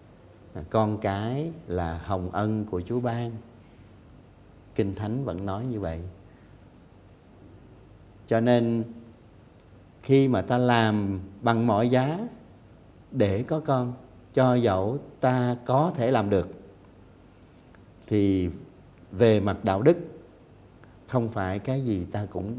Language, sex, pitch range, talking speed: Vietnamese, male, 95-125 Hz, 115 wpm